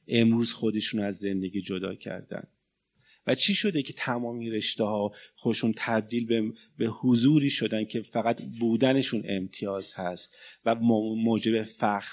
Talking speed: 135 wpm